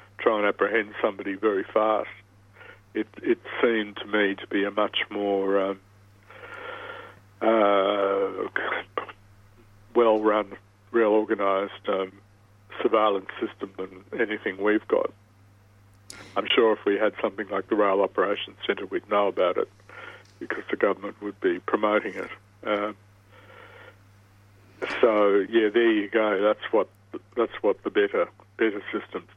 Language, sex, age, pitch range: English, male, 60-79, 100-115 Hz